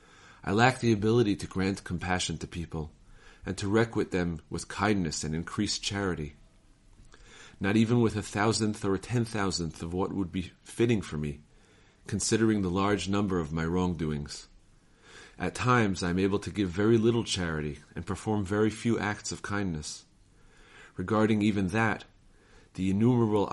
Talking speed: 160 wpm